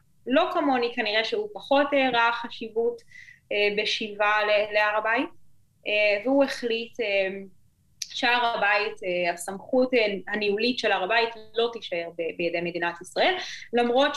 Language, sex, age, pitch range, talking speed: Hebrew, female, 20-39, 185-245 Hz, 120 wpm